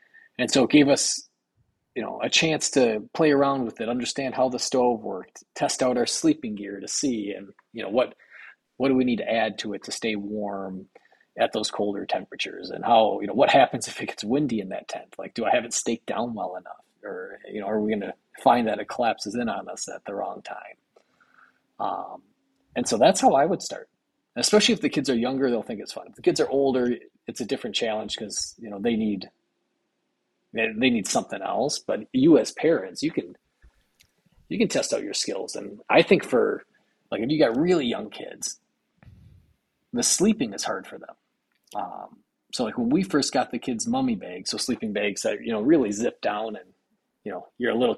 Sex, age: male, 30-49